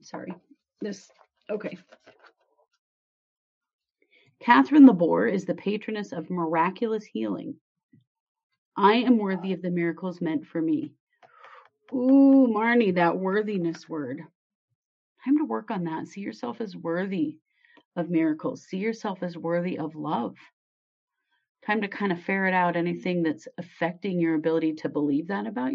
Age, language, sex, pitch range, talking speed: 30-49, English, female, 165-255 Hz, 135 wpm